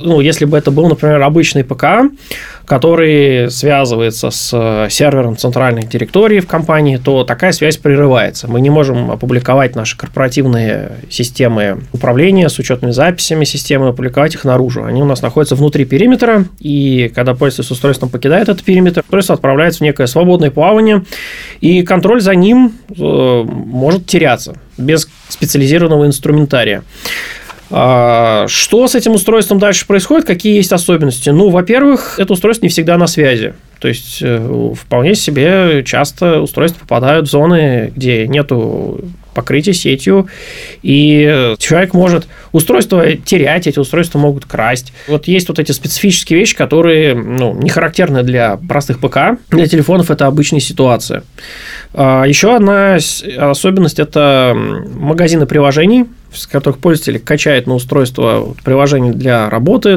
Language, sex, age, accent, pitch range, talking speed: Russian, male, 20-39, native, 130-180 Hz, 135 wpm